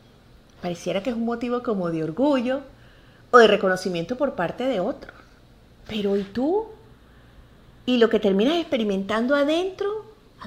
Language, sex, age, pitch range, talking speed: English, female, 40-59, 195-265 Hz, 145 wpm